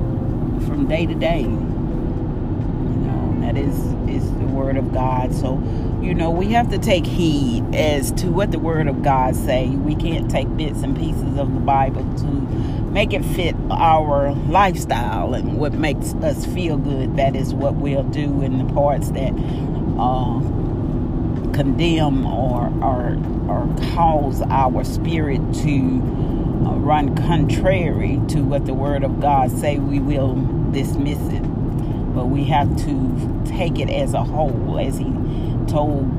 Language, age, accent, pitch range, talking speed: English, 40-59, American, 125-140 Hz, 155 wpm